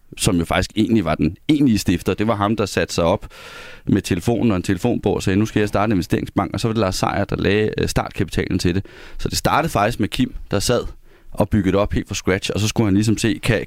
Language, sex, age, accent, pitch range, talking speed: Danish, male, 30-49, native, 100-120 Hz, 270 wpm